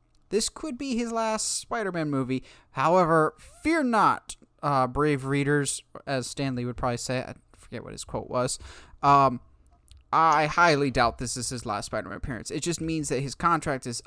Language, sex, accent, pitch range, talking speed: English, male, American, 120-150 Hz, 175 wpm